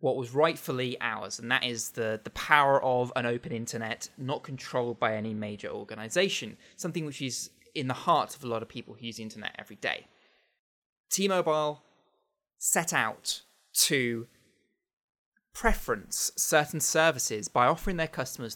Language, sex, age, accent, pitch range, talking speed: English, male, 20-39, British, 120-160 Hz, 155 wpm